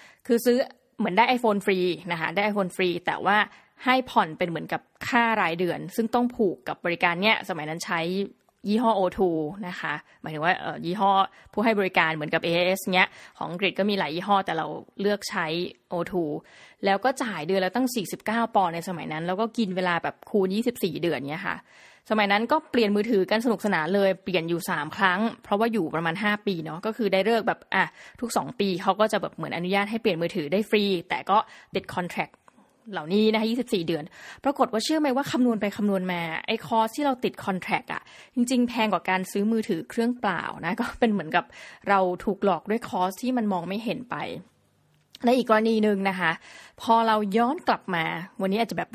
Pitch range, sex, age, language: 180-225 Hz, female, 20-39, Thai